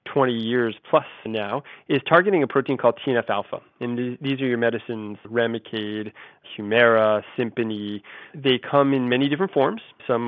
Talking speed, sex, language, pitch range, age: 150 wpm, male, English, 110-130 Hz, 20-39